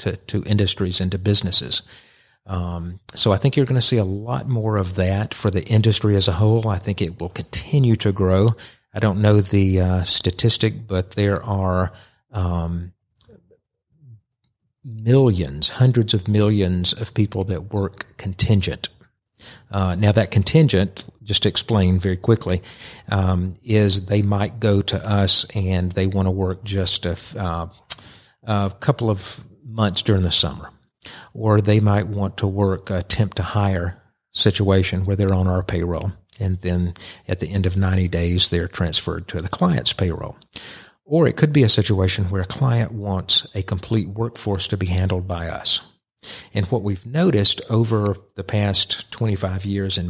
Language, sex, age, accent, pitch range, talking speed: English, male, 40-59, American, 95-110 Hz, 165 wpm